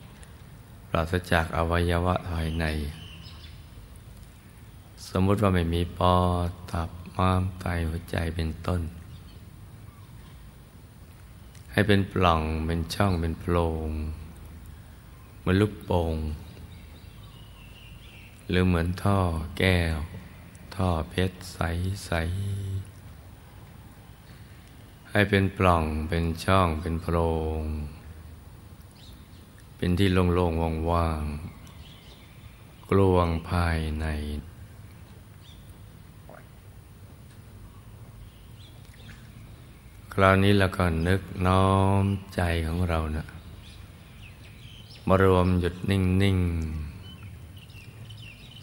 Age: 20-39